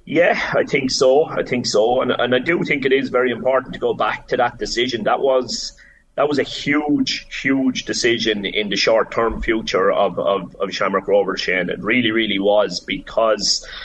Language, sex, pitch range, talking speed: English, male, 110-135 Hz, 200 wpm